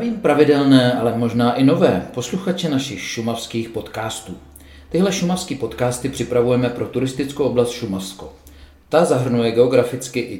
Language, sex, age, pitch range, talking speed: Czech, male, 40-59, 110-135 Hz, 120 wpm